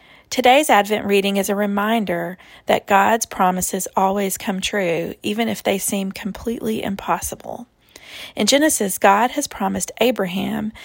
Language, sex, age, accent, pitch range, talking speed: English, female, 40-59, American, 205-255 Hz, 135 wpm